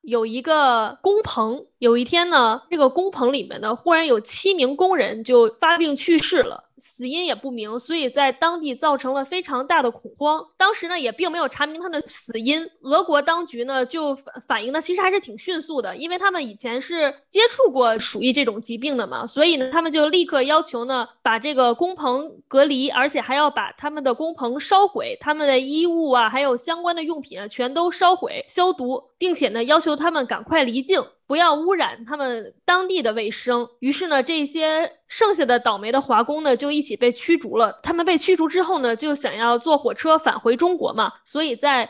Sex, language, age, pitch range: female, Chinese, 20-39, 245-330 Hz